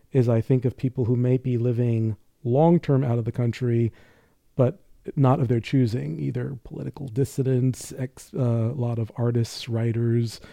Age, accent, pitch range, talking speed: 40-59, American, 110-125 Hz, 160 wpm